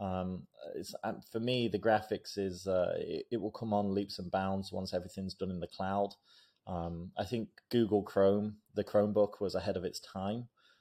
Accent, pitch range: British, 95-110 Hz